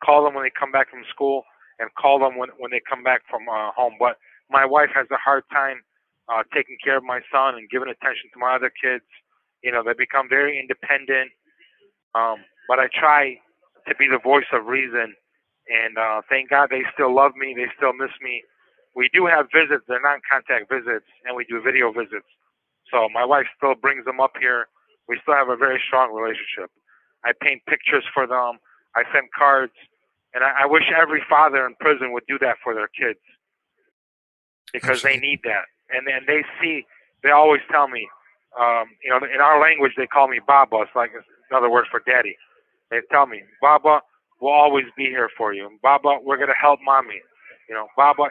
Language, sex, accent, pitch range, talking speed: English, male, American, 125-145 Hz, 200 wpm